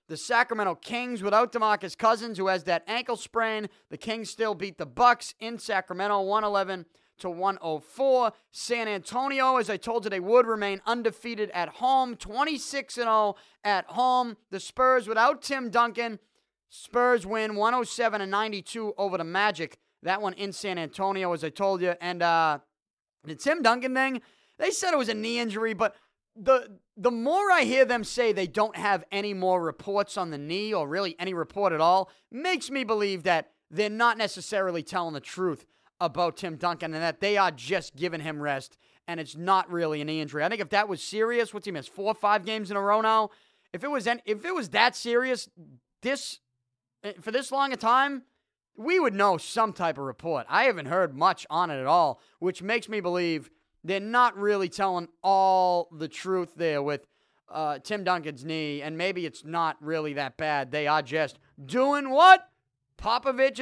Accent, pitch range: American, 170-235 Hz